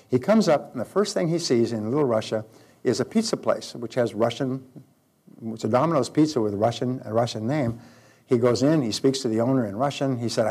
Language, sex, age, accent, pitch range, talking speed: English, male, 60-79, American, 115-140 Hz, 230 wpm